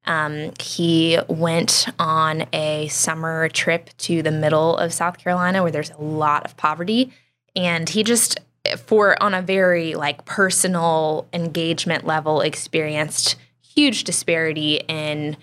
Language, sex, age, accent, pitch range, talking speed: English, female, 10-29, American, 155-185 Hz, 130 wpm